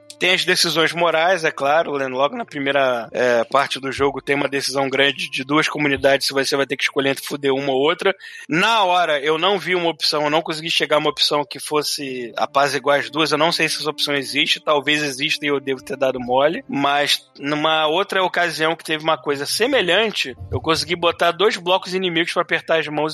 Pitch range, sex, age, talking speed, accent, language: 145-195 Hz, male, 20-39, 225 wpm, Brazilian, Portuguese